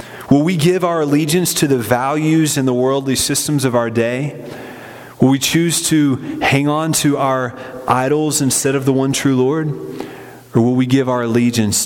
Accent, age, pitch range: American, 30-49, 100-135 Hz